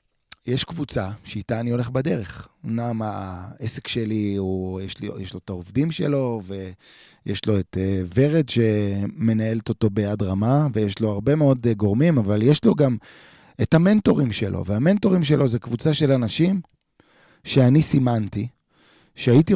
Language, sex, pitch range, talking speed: Hebrew, male, 110-145 Hz, 140 wpm